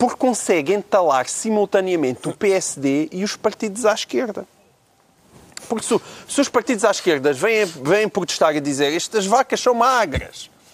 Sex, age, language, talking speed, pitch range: male, 40-59, Portuguese, 150 wpm, 160-235 Hz